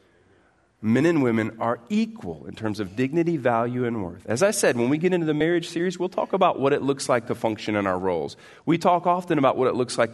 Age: 40-59